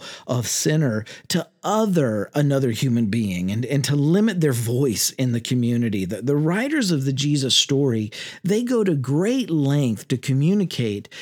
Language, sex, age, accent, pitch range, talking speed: English, male, 50-69, American, 125-175 Hz, 160 wpm